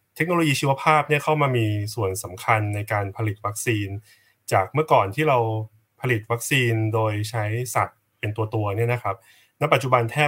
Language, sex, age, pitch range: Thai, male, 20-39, 110-130 Hz